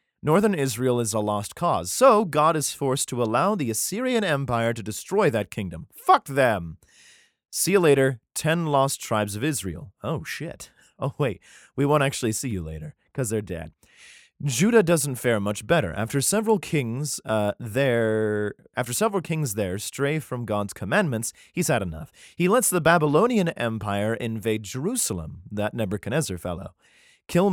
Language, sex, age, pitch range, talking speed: English, male, 30-49, 105-155 Hz, 160 wpm